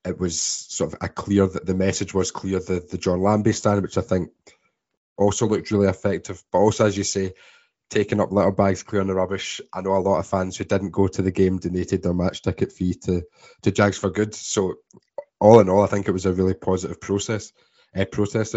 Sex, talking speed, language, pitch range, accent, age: male, 230 wpm, English, 95-105 Hz, British, 20-39